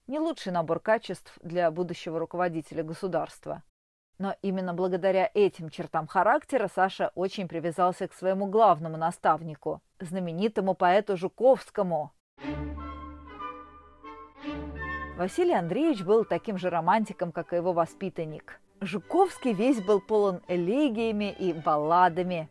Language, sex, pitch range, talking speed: Russian, female, 170-230 Hz, 110 wpm